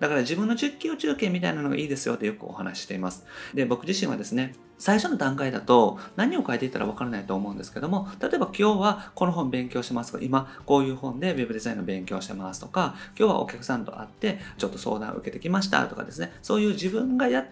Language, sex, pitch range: Japanese, male, 135-225 Hz